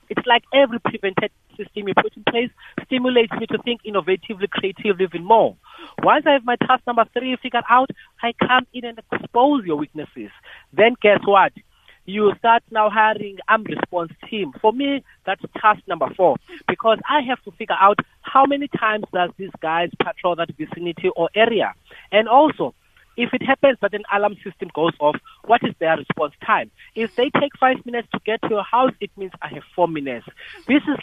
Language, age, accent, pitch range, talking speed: English, 30-49, South African, 175-230 Hz, 195 wpm